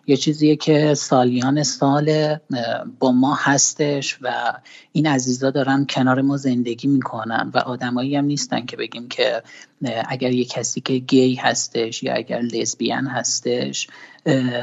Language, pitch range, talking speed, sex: Persian, 130-155 Hz, 135 wpm, male